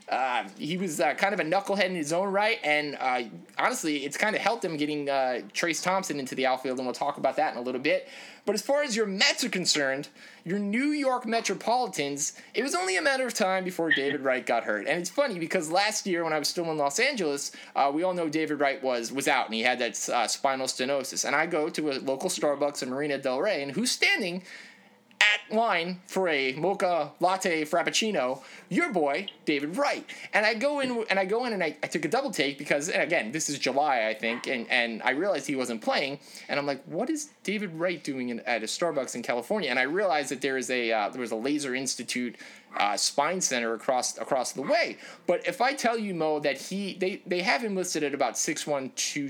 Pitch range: 140-200 Hz